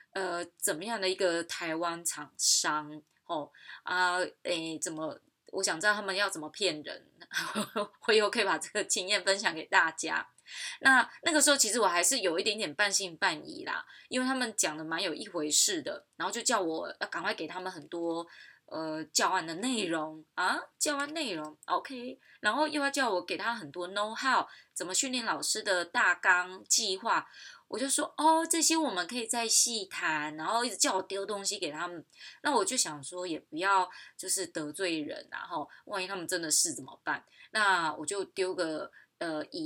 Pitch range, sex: 175-270 Hz, female